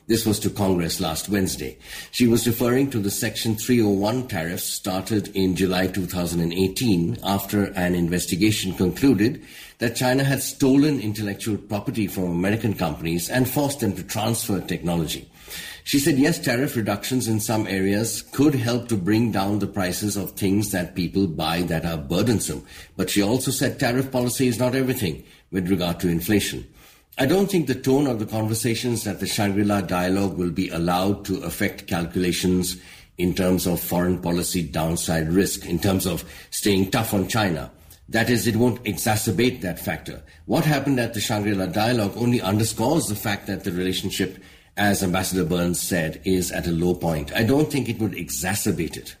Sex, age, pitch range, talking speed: male, 60-79, 90-115 Hz, 170 wpm